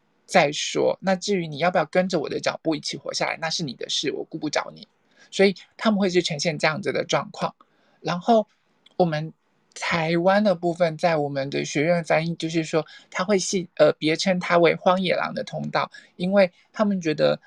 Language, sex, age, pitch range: Chinese, male, 20-39, 160-190 Hz